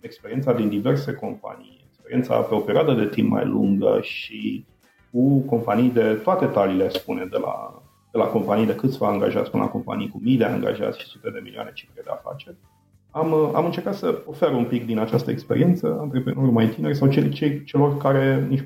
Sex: male